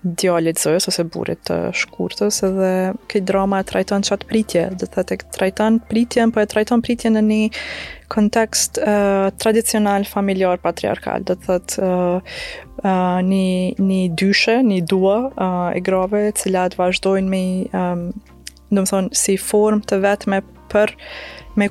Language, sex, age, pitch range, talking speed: English, female, 20-39, 185-210 Hz, 120 wpm